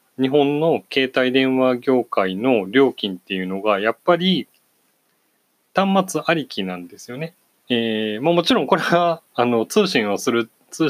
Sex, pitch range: male, 100-170 Hz